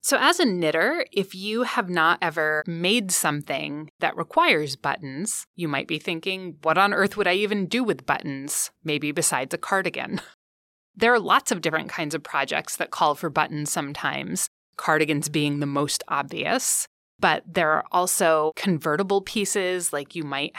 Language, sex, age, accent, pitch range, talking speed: English, female, 20-39, American, 150-195 Hz, 170 wpm